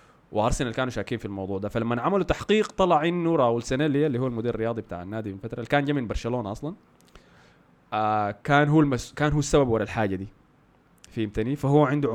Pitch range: 105-145 Hz